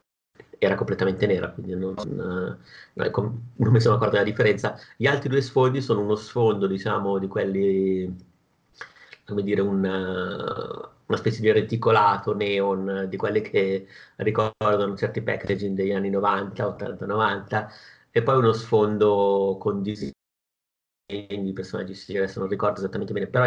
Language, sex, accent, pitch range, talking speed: Italian, male, native, 95-110 Hz, 145 wpm